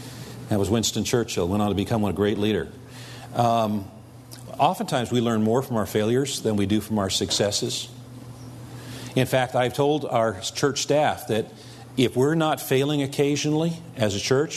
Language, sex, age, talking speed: English, male, 50-69, 170 wpm